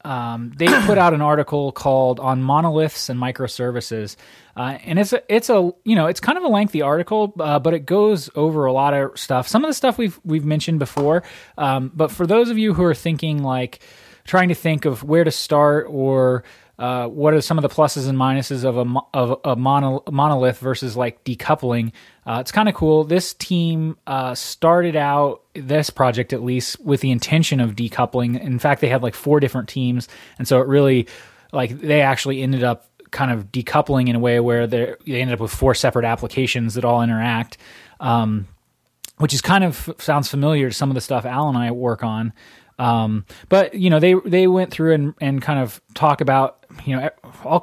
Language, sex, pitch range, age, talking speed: English, male, 125-155 Hz, 20-39, 210 wpm